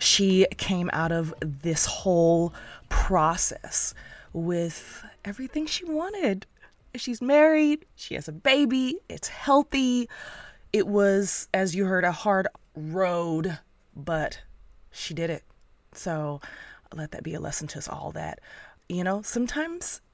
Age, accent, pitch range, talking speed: 20-39, American, 165-235 Hz, 130 wpm